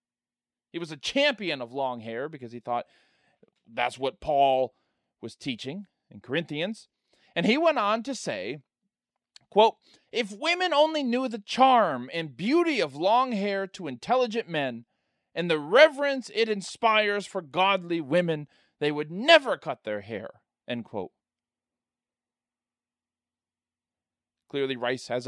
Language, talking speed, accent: English, 135 wpm, American